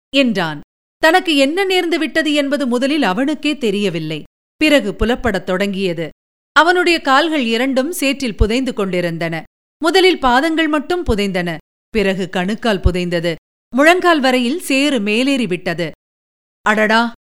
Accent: native